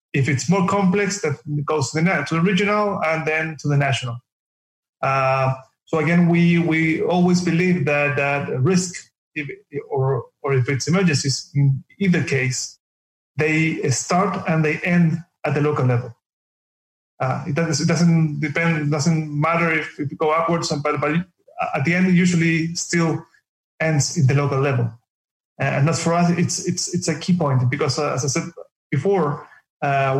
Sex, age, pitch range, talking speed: male, 30-49, 140-165 Hz, 180 wpm